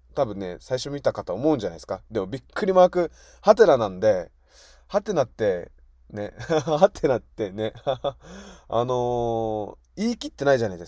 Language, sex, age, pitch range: Japanese, male, 20-39, 115-190 Hz